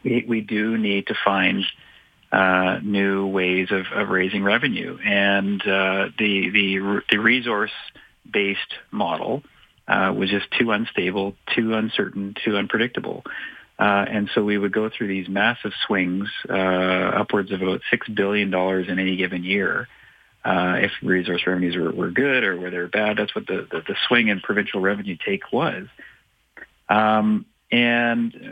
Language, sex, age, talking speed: English, male, 40-59, 155 wpm